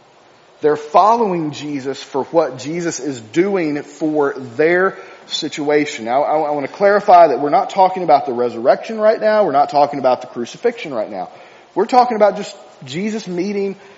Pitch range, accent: 145-205 Hz, American